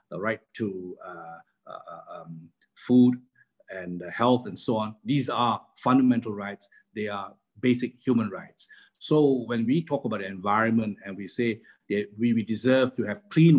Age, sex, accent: 50-69, male, Malaysian